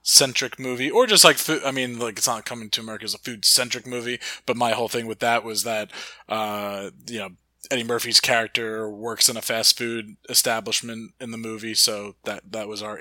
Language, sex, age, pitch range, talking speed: English, male, 20-39, 110-125 Hz, 215 wpm